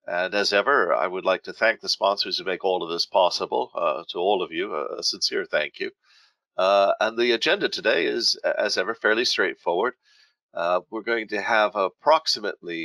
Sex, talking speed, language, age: male, 190 wpm, English, 50-69